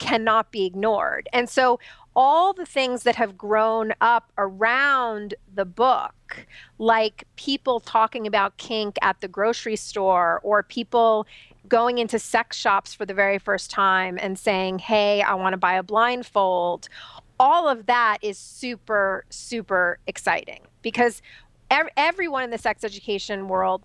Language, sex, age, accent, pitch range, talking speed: English, female, 40-59, American, 200-245 Hz, 145 wpm